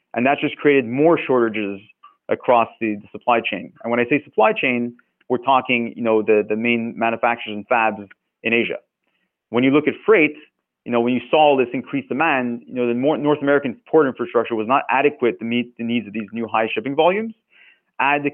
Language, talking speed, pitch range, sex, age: English, 215 wpm, 115-145 Hz, male, 30-49